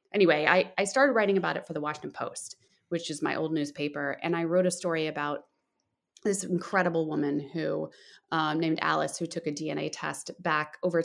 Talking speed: 195 wpm